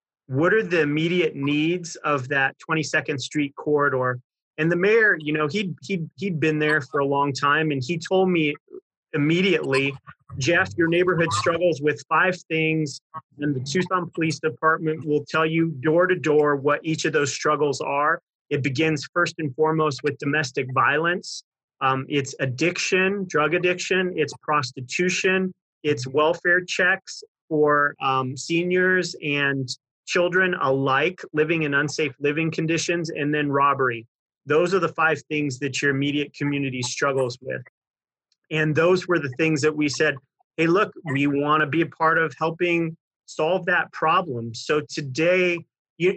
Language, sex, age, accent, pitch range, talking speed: English, male, 30-49, American, 145-170 Hz, 155 wpm